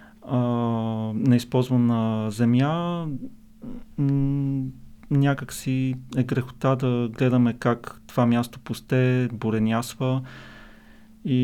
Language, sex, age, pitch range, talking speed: Bulgarian, male, 40-59, 115-135 Hz, 70 wpm